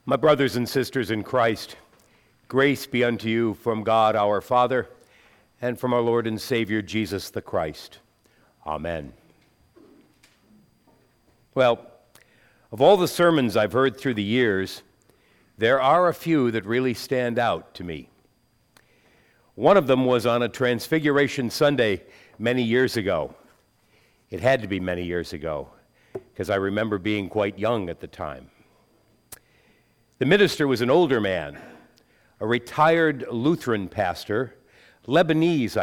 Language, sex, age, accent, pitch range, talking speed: English, male, 60-79, American, 110-135 Hz, 135 wpm